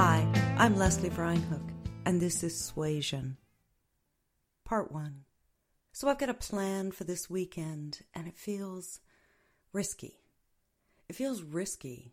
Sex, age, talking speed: female, 40-59, 125 wpm